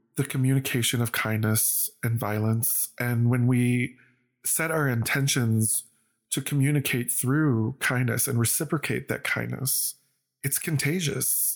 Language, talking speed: English, 115 wpm